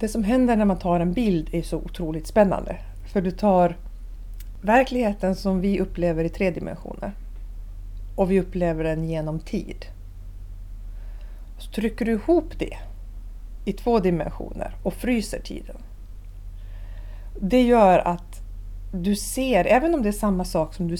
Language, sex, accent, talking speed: Swedish, female, native, 145 wpm